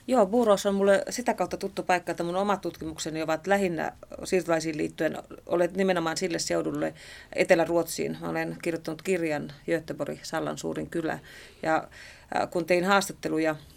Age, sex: 30-49, female